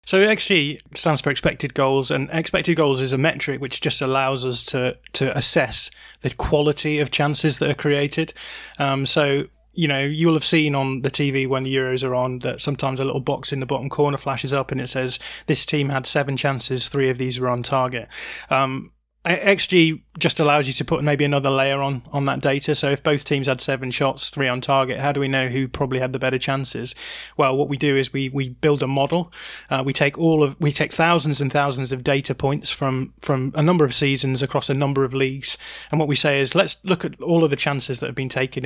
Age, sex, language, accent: 20-39, male, English, British